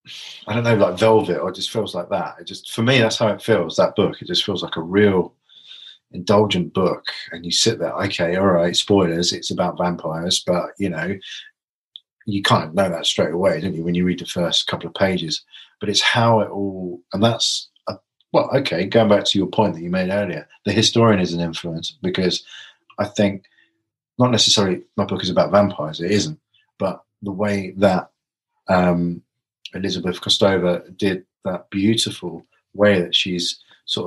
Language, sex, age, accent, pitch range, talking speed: English, male, 40-59, British, 85-100 Hz, 195 wpm